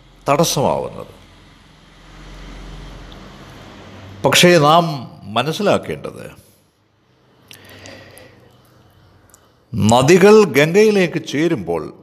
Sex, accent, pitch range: male, native, 105-170 Hz